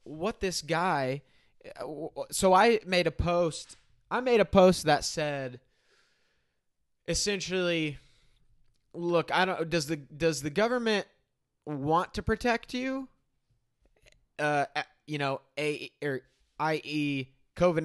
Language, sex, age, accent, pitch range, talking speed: English, male, 20-39, American, 145-205 Hz, 115 wpm